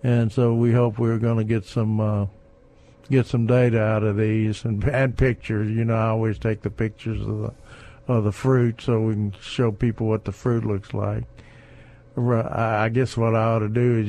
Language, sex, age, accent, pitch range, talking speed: English, male, 60-79, American, 110-120 Hz, 210 wpm